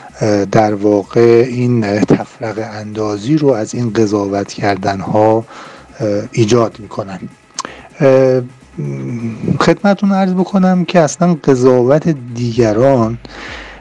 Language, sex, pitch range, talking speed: Persian, male, 110-130 Hz, 85 wpm